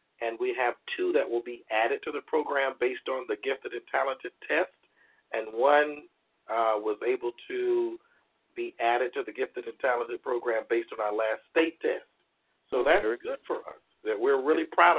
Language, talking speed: English, 190 wpm